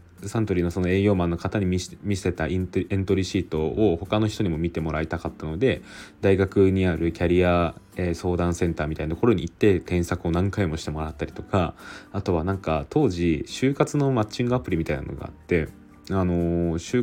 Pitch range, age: 80-100 Hz, 20-39